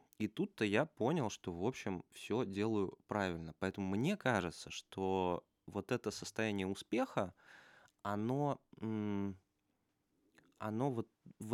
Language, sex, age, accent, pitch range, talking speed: Russian, male, 20-39, native, 90-105 Hz, 115 wpm